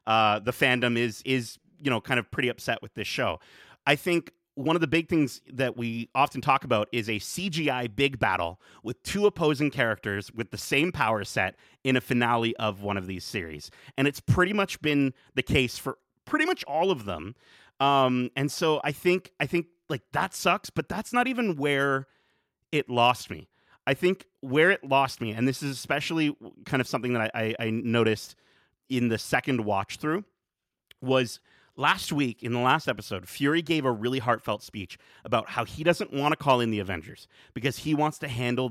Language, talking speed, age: English, 200 wpm, 30-49